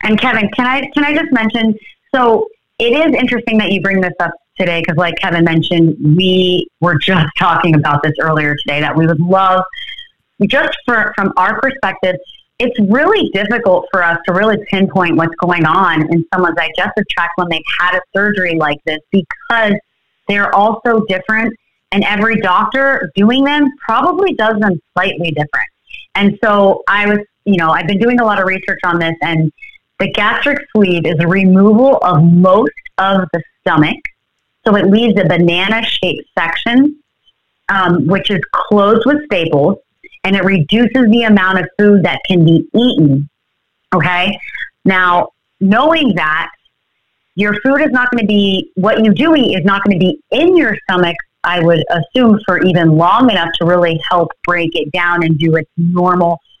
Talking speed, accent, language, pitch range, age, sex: 175 wpm, American, English, 175-225 Hz, 30-49, female